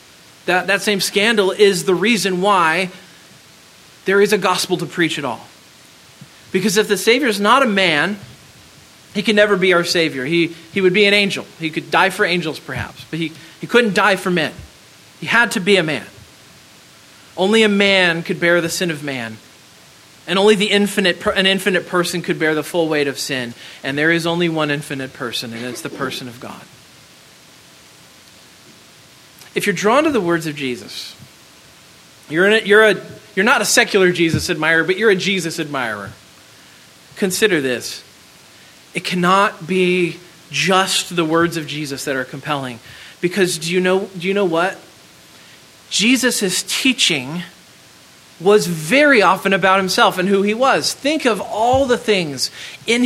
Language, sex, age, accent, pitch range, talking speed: English, male, 40-59, American, 145-200 Hz, 175 wpm